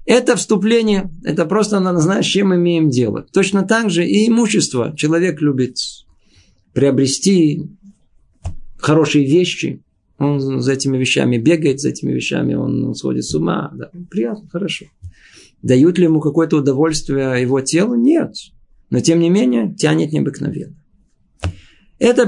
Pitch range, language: 135-195 Hz, Russian